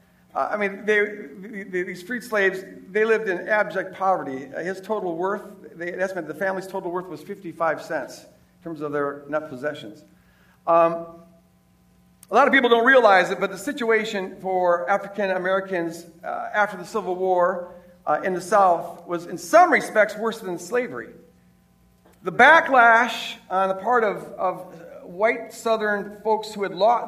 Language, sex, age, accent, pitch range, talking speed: English, male, 50-69, American, 175-225 Hz, 165 wpm